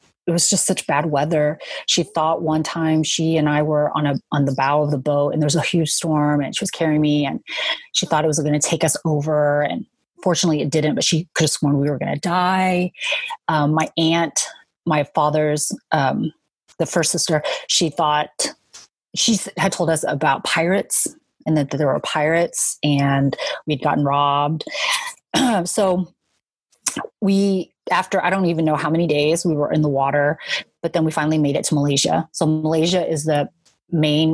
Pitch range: 150-175 Hz